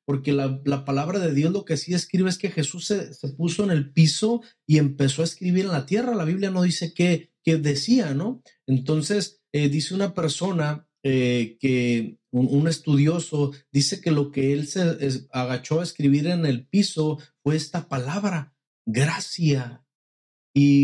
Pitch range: 145-195 Hz